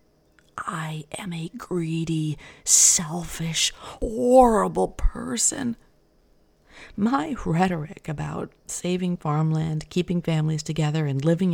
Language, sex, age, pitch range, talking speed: English, female, 40-59, 160-225 Hz, 90 wpm